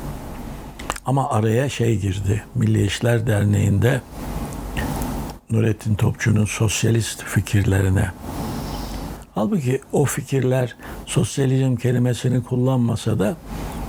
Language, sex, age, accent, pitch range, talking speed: Turkish, male, 60-79, native, 100-125 Hz, 80 wpm